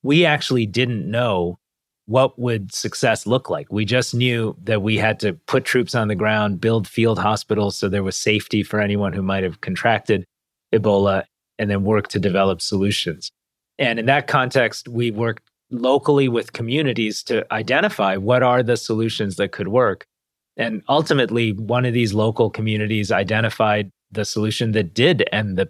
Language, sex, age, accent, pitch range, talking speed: English, male, 30-49, American, 100-120 Hz, 170 wpm